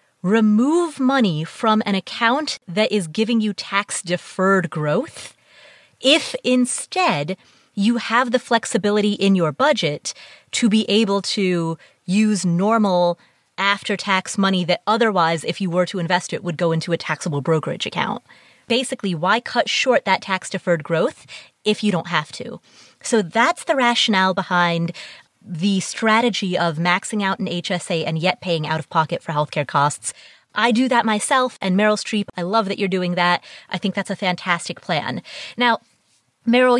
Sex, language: female, English